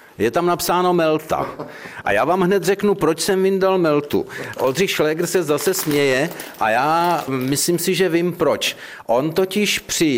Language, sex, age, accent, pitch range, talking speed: Czech, male, 50-69, native, 115-155 Hz, 165 wpm